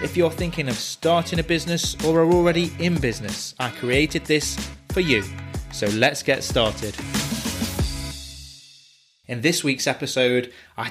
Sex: male